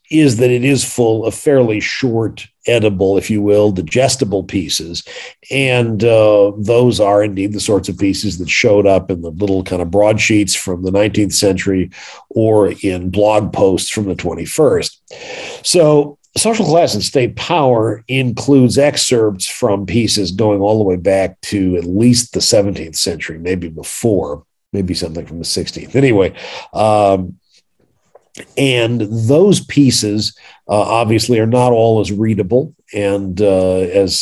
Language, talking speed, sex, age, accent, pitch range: English, 150 wpm, male, 50-69, American, 95-120 Hz